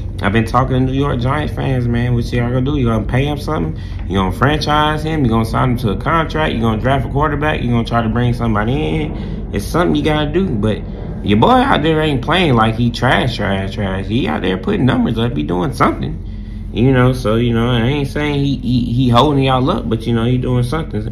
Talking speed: 265 wpm